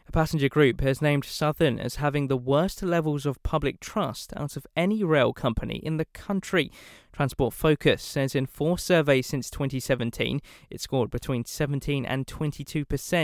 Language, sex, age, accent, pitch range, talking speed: English, male, 20-39, British, 135-170 Hz, 155 wpm